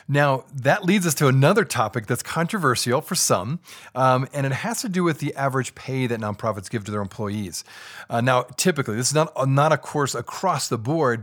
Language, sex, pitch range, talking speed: English, male, 120-175 Hz, 210 wpm